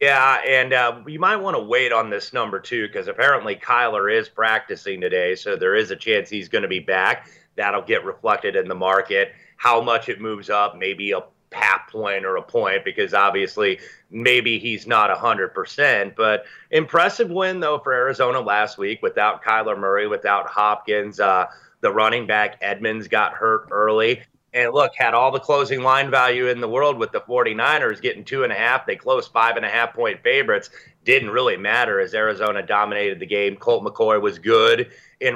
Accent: American